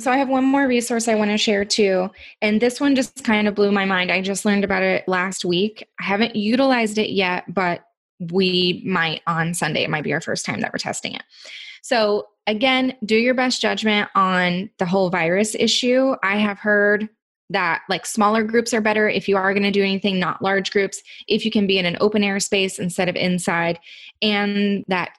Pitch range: 185-220 Hz